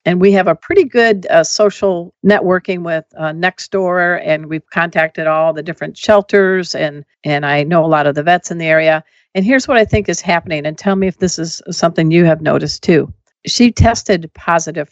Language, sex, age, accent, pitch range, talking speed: English, female, 50-69, American, 160-200 Hz, 210 wpm